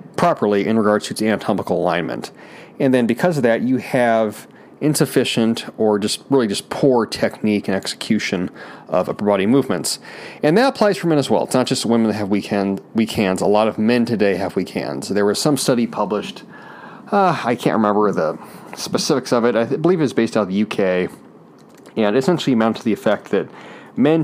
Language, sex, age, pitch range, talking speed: English, male, 30-49, 100-125 Hz, 205 wpm